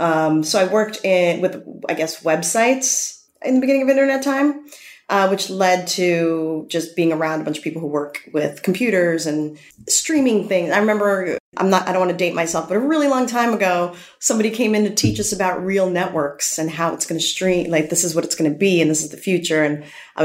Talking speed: 235 wpm